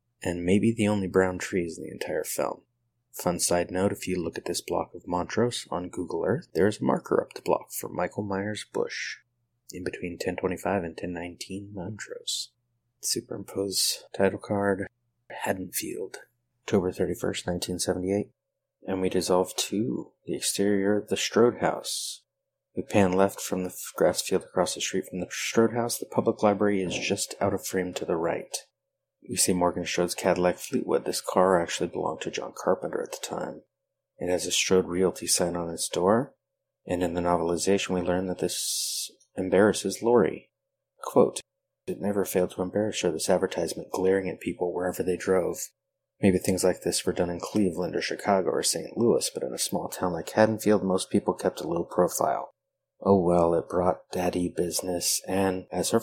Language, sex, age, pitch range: English, male, 30-49, 90-105 Hz